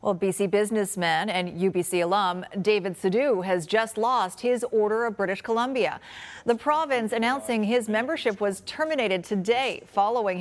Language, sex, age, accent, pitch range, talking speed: English, female, 40-59, American, 190-235 Hz, 145 wpm